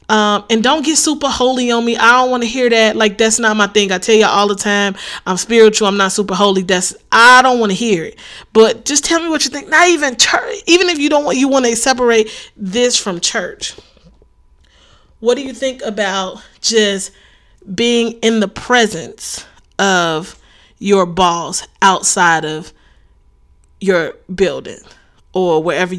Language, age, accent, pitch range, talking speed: English, 30-49, American, 190-240 Hz, 185 wpm